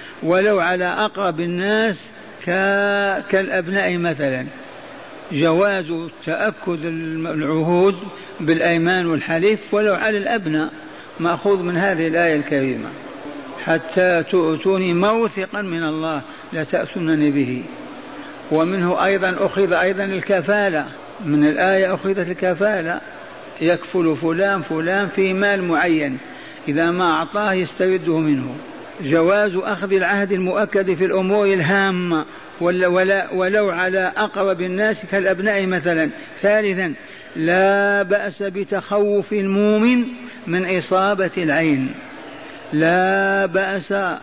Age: 60-79